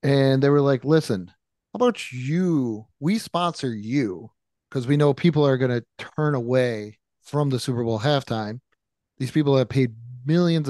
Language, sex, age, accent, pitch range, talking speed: English, male, 30-49, American, 115-145 Hz, 170 wpm